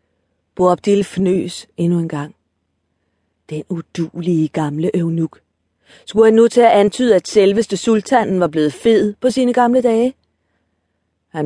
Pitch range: 145-200 Hz